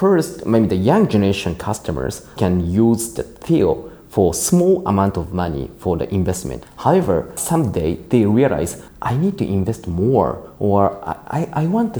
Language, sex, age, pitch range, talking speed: English, male, 30-49, 95-130 Hz, 160 wpm